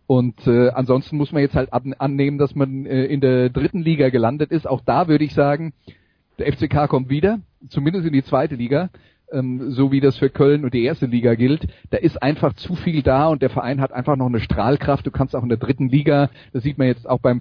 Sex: male